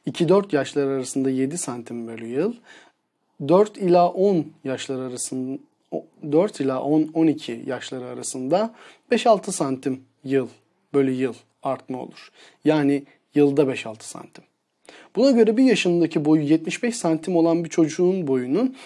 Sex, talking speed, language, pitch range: male, 125 wpm, Turkish, 140-185 Hz